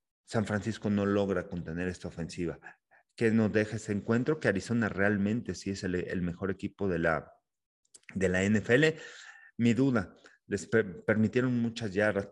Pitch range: 95-115 Hz